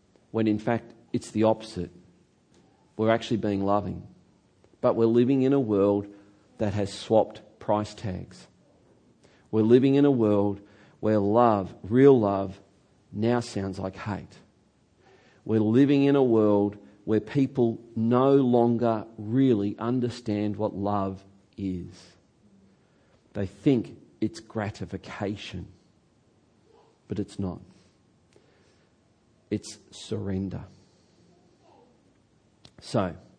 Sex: male